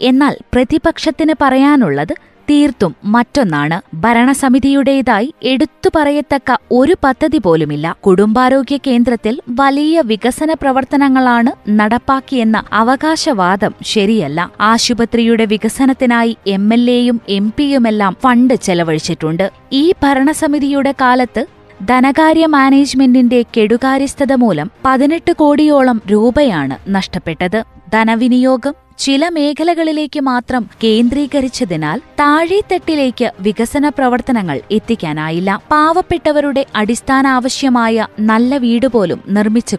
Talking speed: 80 wpm